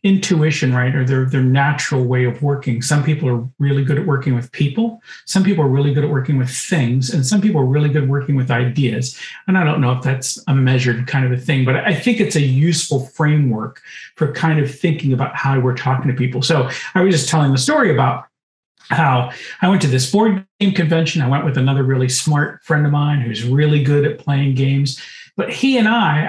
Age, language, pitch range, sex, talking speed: 50-69, English, 135-190 Hz, male, 230 wpm